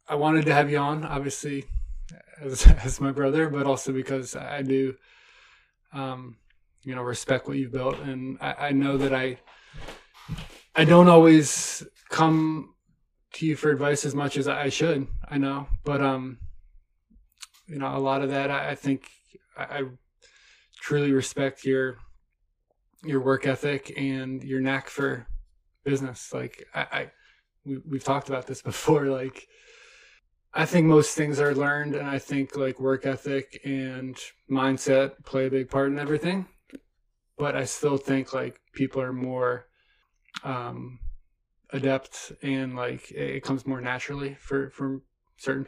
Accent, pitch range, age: American, 130-140 Hz, 20-39